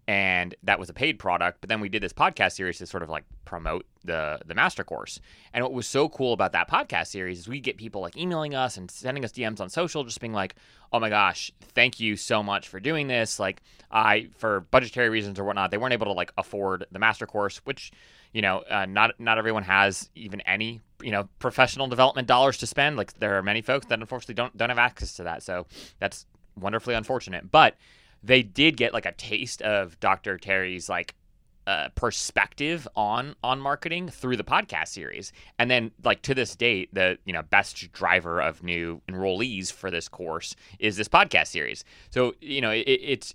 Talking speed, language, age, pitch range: 210 wpm, English, 20-39, 95-125 Hz